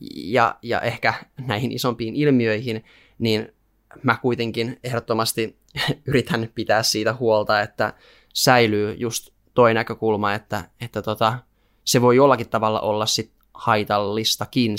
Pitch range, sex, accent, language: 105-120 Hz, male, native, Finnish